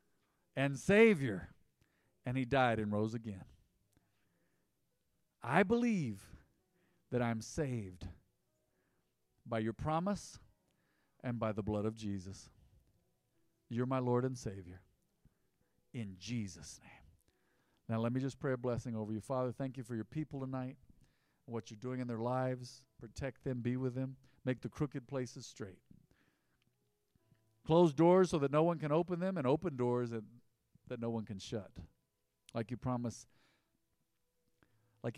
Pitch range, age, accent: 105-130 Hz, 50-69, American